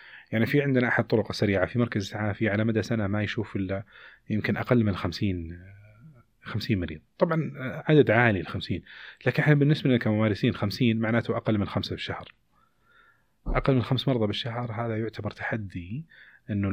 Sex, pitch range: male, 95-120 Hz